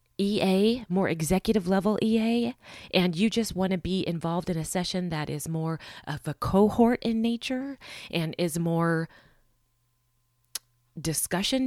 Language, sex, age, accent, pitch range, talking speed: English, female, 30-49, American, 155-215 Hz, 140 wpm